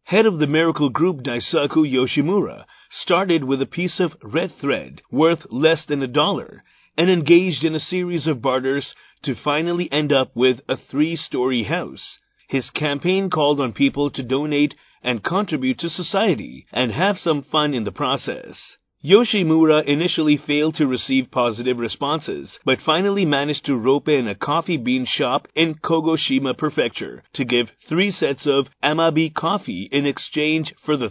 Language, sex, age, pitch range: Japanese, male, 40-59, 140-170 Hz